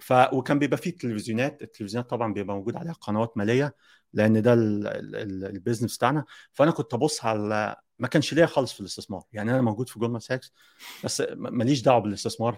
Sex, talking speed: male, 170 wpm